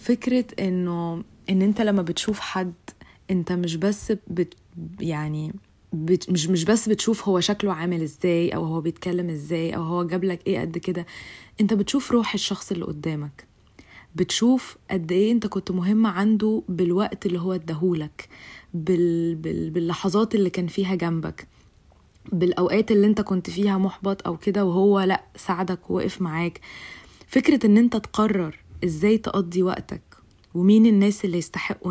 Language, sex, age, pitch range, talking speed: Arabic, female, 20-39, 170-205 Hz, 150 wpm